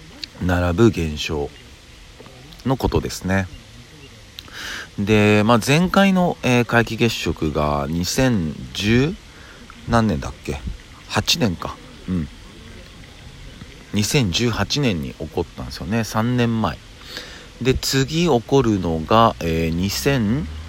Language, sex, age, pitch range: Japanese, male, 50-69, 85-120 Hz